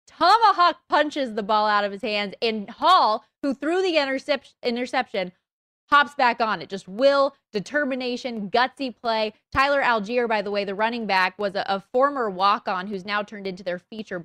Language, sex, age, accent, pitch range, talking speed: English, female, 20-39, American, 195-270 Hz, 180 wpm